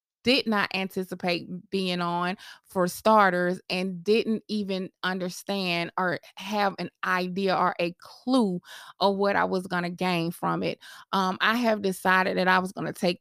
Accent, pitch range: American, 180-210 Hz